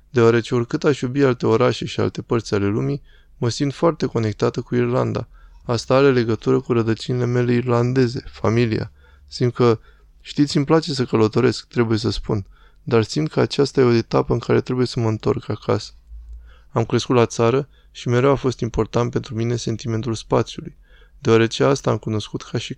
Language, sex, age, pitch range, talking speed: Romanian, male, 20-39, 110-135 Hz, 180 wpm